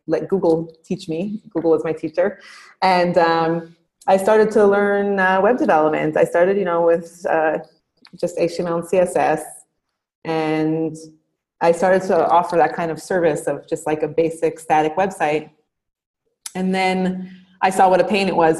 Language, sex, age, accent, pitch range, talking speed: English, female, 30-49, American, 160-190 Hz, 170 wpm